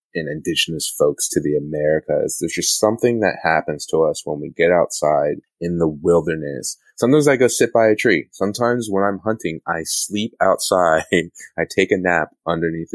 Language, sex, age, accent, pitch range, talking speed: English, male, 20-39, American, 80-110 Hz, 180 wpm